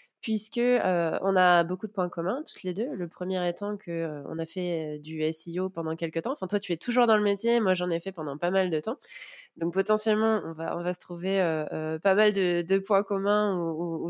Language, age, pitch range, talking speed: French, 20-39, 175-230 Hz, 255 wpm